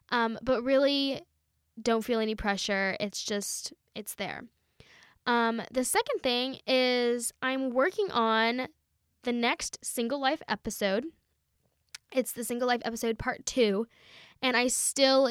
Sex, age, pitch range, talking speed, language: female, 10-29, 220-265 Hz, 135 wpm, English